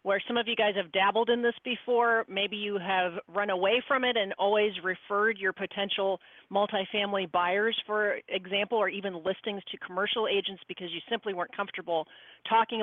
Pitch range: 185-245 Hz